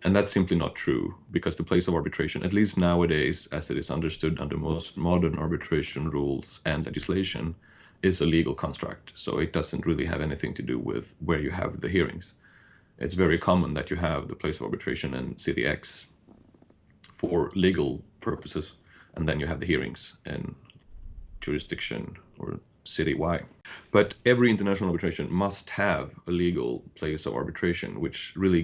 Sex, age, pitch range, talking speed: male, 30-49, 80-95 Hz, 170 wpm